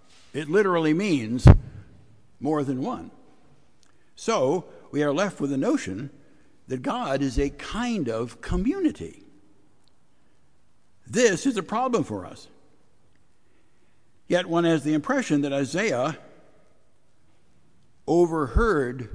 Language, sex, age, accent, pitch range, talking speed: English, male, 60-79, American, 125-160 Hz, 105 wpm